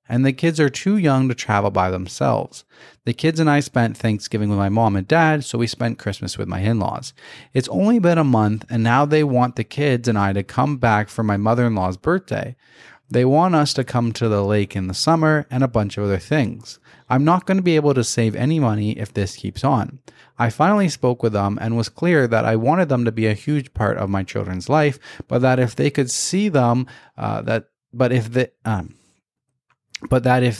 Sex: male